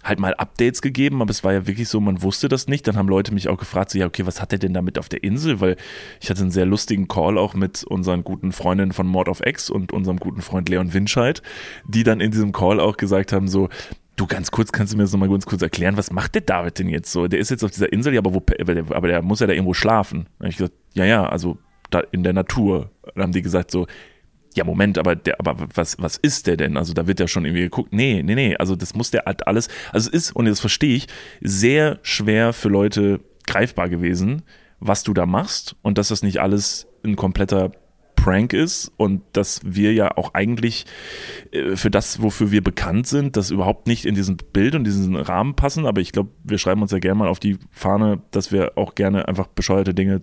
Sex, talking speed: male, 245 wpm